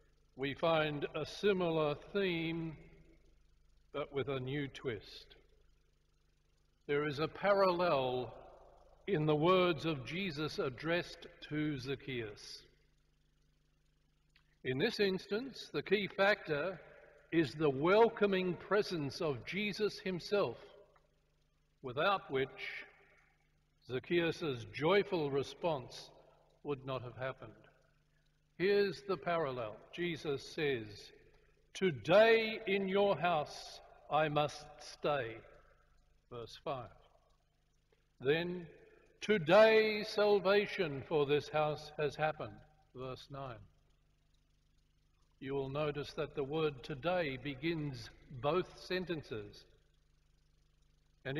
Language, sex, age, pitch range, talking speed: Ukrainian, male, 60-79, 130-180 Hz, 90 wpm